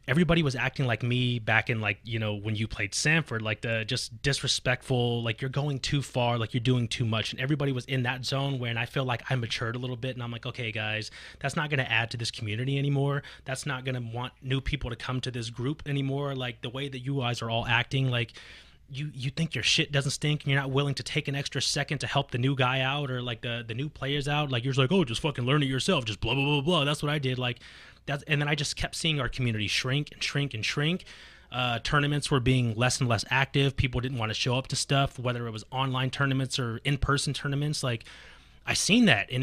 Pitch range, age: 120-140 Hz, 20-39